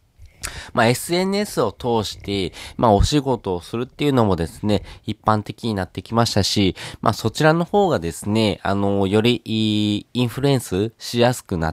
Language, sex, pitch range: Japanese, male, 95-130 Hz